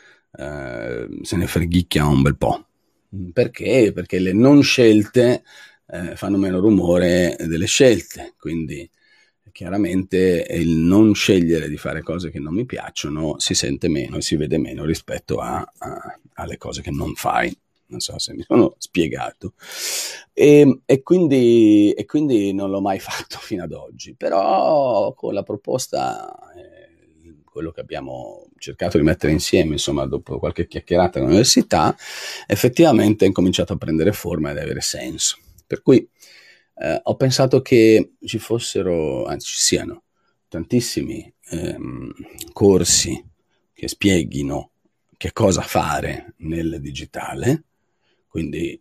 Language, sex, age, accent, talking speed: Italian, male, 40-59, native, 130 wpm